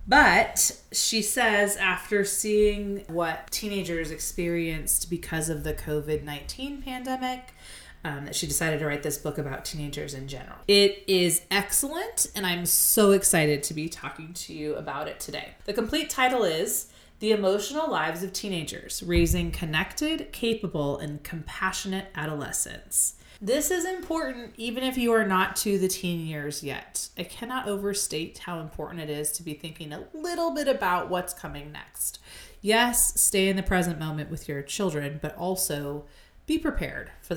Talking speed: 160 wpm